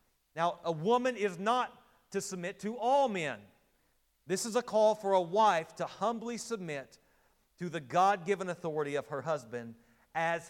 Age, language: 40-59, English